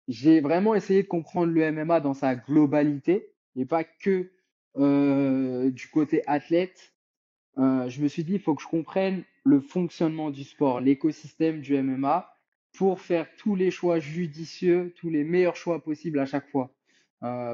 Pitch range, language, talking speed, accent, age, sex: 145-175 Hz, French, 170 wpm, French, 20-39, male